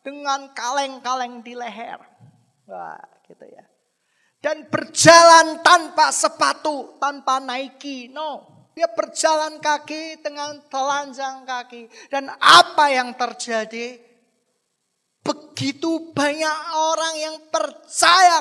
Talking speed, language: 95 wpm, Indonesian